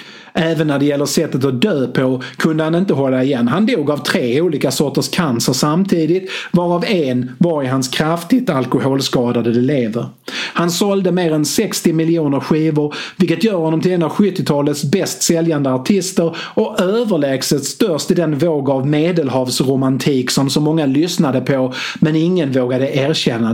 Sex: male